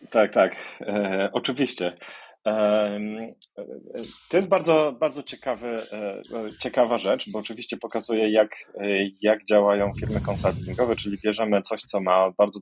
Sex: male